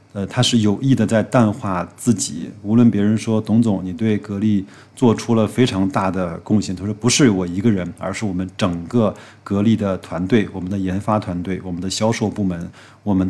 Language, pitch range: Chinese, 95-120 Hz